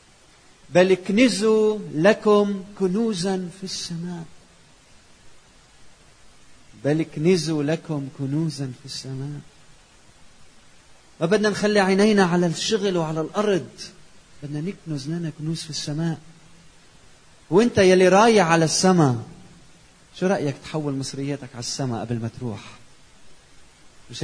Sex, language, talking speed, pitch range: male, Arabic, 100 wpm, 135-180 Hz